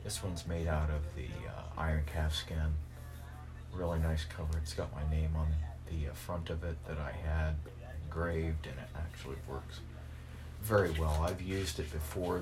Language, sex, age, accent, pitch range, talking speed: English, male, 30-49, American, 65-85 Hz, 175 wpm